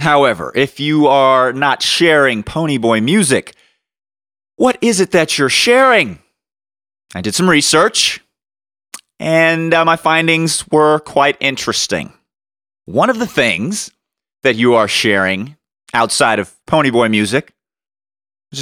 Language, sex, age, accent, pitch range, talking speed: English, male, 30-49, American, 105-175 Hz, 120 wpm